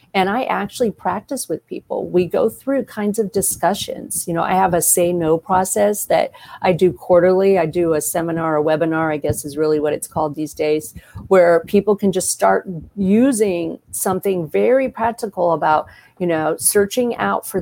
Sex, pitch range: female, 165-205 Hz